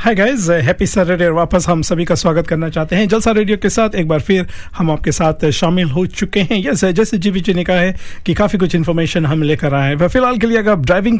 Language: Hindi